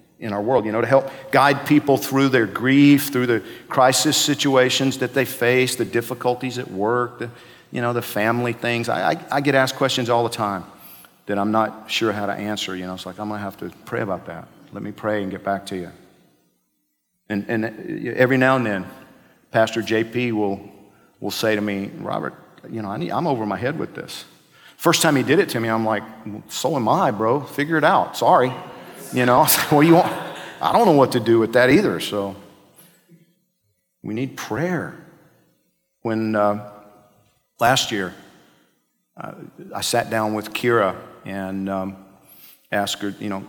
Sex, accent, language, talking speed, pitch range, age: male, American, English, 195 wpm, 105-125 Hz, 50-69